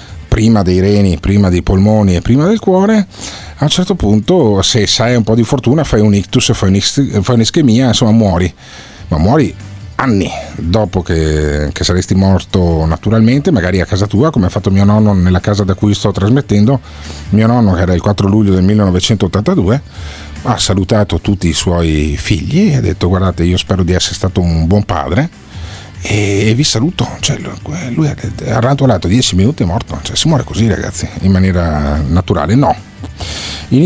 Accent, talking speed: native, 175 wpm